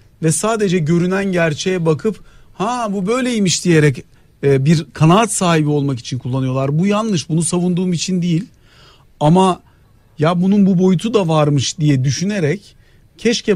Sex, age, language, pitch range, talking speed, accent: male, 50-69, Turkish, 135-185 Hz, 135 wpm, native